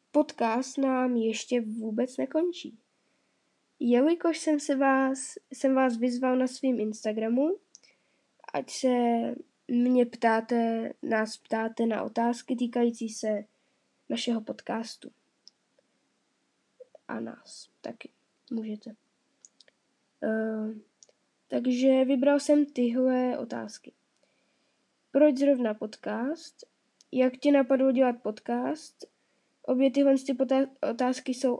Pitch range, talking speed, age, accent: 225-270 Hz, 85 wpm, 10-29, native